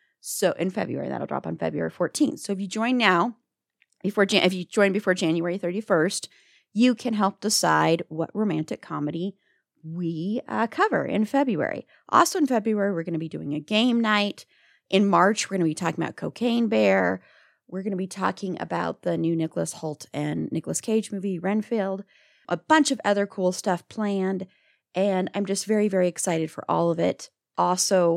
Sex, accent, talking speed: female, American, 185 wpm